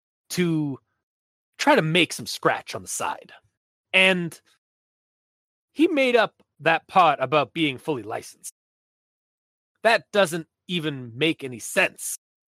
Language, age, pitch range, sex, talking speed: English, 30-49, 140-195 Hz, male, 120 wpm